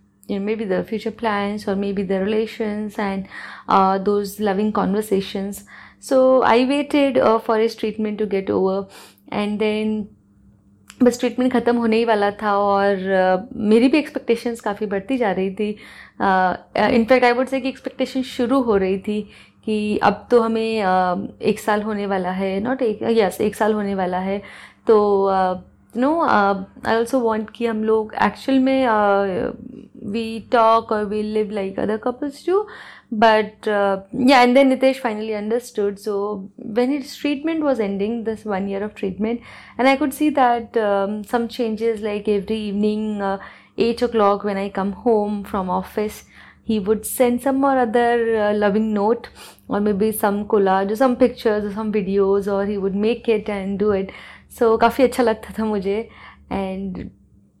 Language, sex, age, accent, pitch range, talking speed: Hindi, female, 30-49, native, 200-235 Hz, 175 wpm